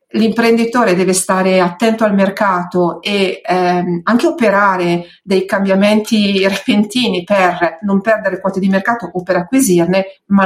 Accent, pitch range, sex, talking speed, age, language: native, 180-215 Hz, female, 130 wpm, 40-59, Italian